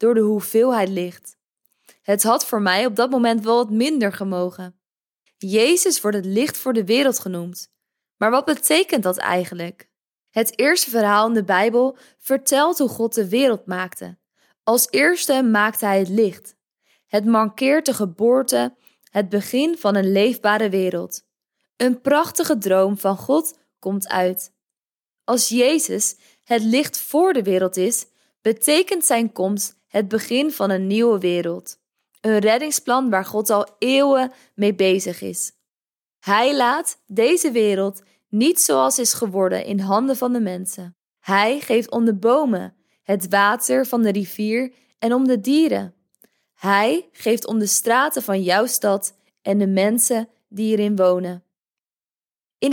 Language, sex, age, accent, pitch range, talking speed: Dutch, female, 20-39, Dutch, 195-250 Hz, 150 wpm